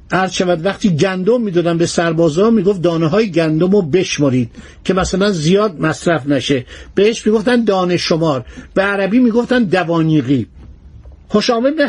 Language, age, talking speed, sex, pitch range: Persian, 50-69, 140 wpm, male, 175-230 Hz